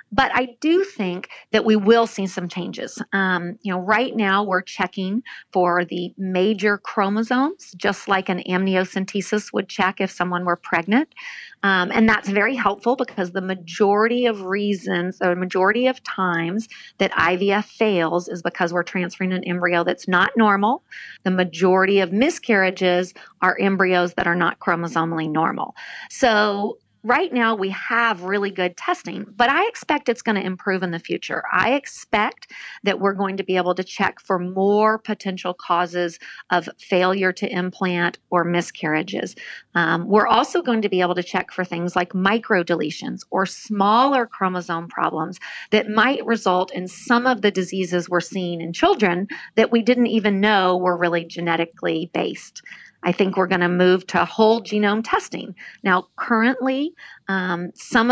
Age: 40-59